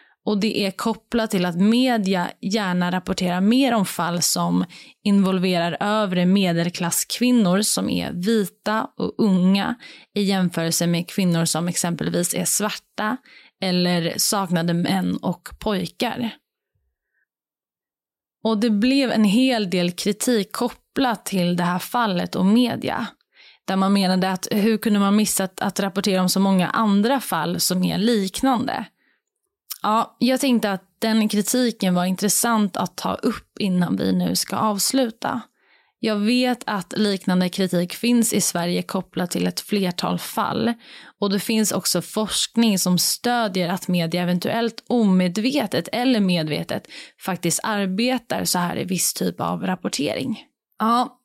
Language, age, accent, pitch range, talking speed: Swedish, 20-39, native, 180-230 Hz, 140 wpm